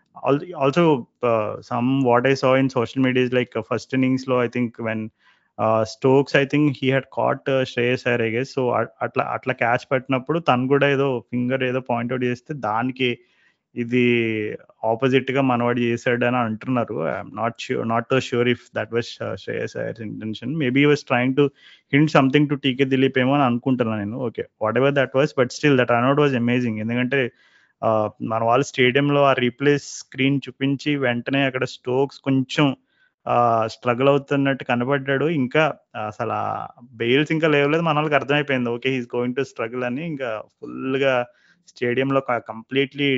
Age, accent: 20-39, native